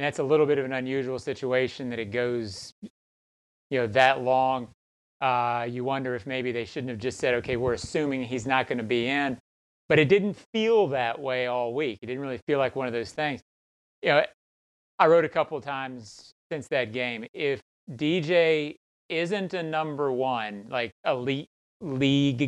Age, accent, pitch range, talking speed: 30-49, American, 125-150 Hz, 190 wpm